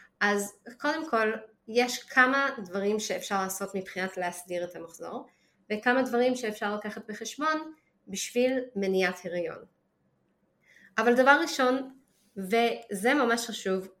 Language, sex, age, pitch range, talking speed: Hebrew, female, 20-39, 190-245 Hz, 110 wpm